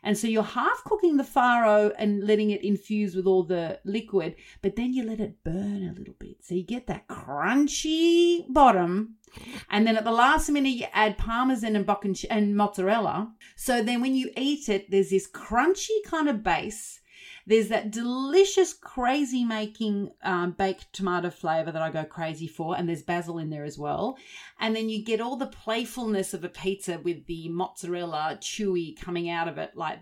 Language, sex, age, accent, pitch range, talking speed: English, female, 30-49, Australian, 175-240 Hz, 185 wpm